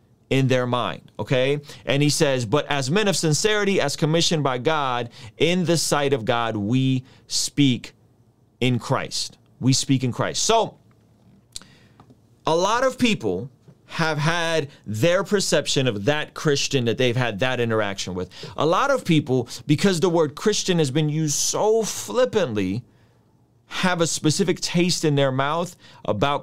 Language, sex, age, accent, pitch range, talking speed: English, male, 30-49, American, 120-155 Hz, 155 wpm